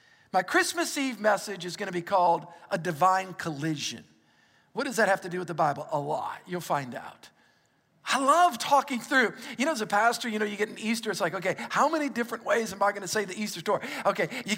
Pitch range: 185-255 Hz